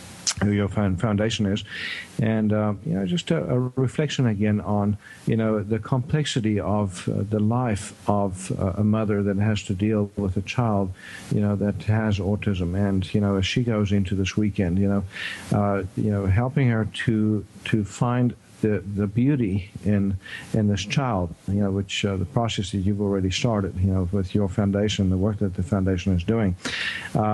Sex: male